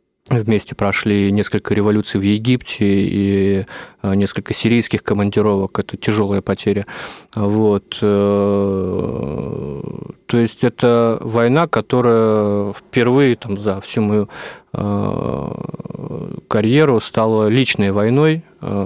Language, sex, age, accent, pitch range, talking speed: Russian, male, 20-39, native, 105-115 Hz, 85 wpm